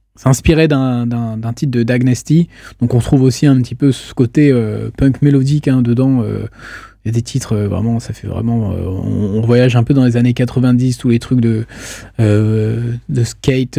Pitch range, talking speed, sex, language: 110-135 Hz, 220 wpm, male, French